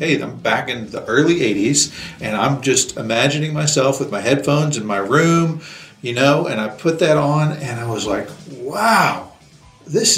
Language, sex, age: English, male, 40-59